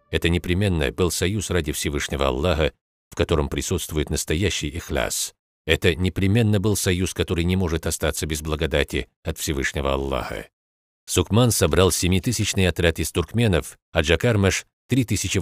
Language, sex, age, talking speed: Russian, male, 50-69, 135 wpm